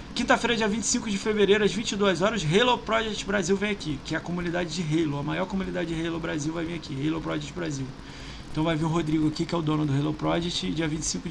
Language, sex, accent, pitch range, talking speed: Portuguese, male, Brazilian, 155-215 Hz, 245 wpm